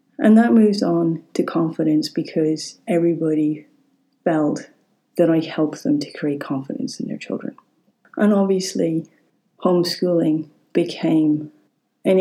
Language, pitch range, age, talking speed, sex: English, 150-175 Hz, 30-49, 120 wpm, female